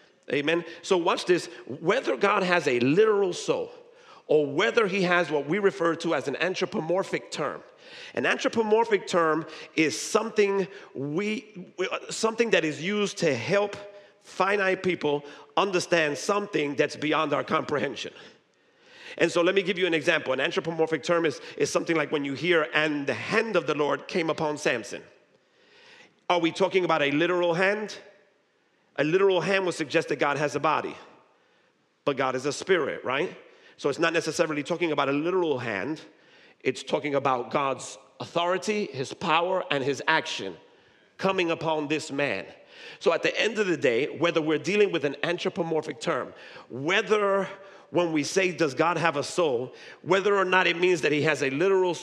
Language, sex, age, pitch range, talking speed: English, male, 50-69, 155-205 Hz, 170 wpm